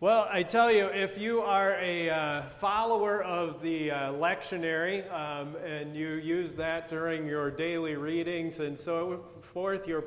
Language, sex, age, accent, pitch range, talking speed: English, male, 30-49, American, 155-200 Hz, 160 wpm